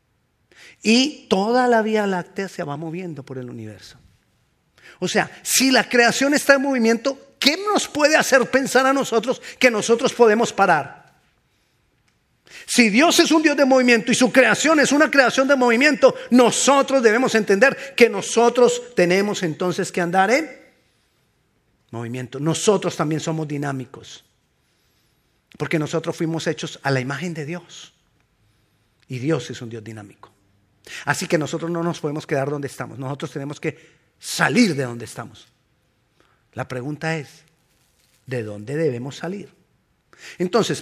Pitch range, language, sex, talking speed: 140-225 Hz, Spanish, male, 145 wpm